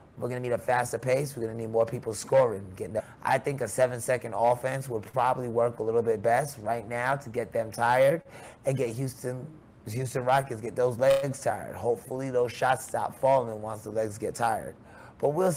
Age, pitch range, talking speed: 30-49, 110-130 Hz, 205 wpm